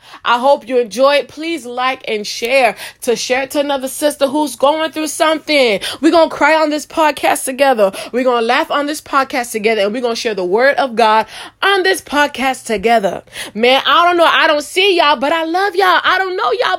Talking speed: 230 wpm